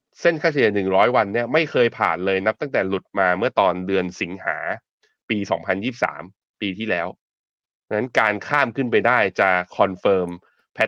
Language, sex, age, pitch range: Thai, male, 20-39, 95-120 Hz